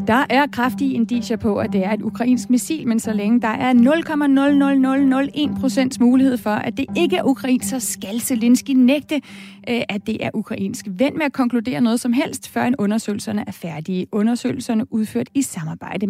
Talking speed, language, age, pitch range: 175 wpm, Danish, 30-49, 220-265 Hz